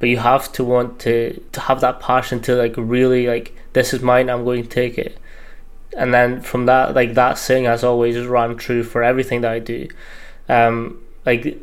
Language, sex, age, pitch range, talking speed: English, male, 20-39, 115-130 Hz, 210 wpm